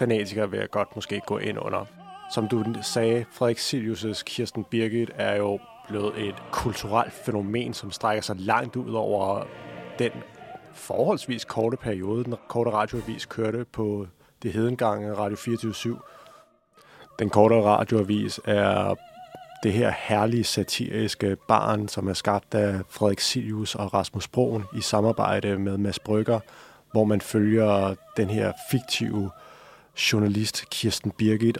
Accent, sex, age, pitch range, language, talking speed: native, male, 30-49, 105-125 Hz, Danish, 135 wpm